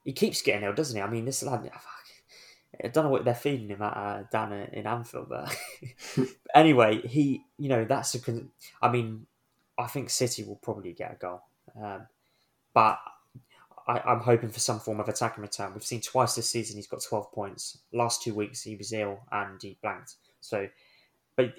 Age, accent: 20-39, British